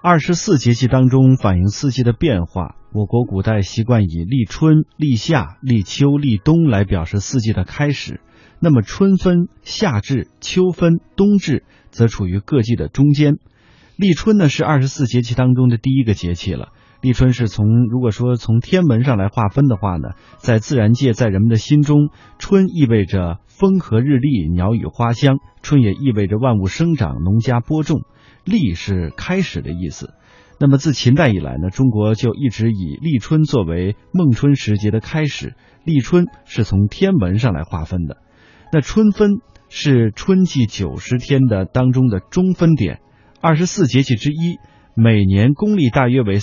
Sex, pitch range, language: male, 105-150 Hz, Chinese